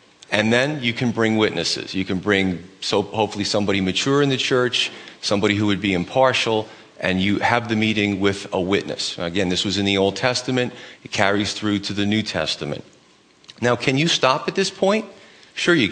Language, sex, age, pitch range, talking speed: English, male, 40-59, 105-130 Hz, 190 wpm